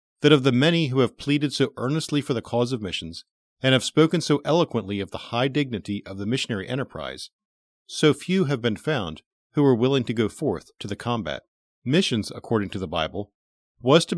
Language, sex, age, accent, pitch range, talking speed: English, male, 40-59, American, 100-150 Hz, 205 wpm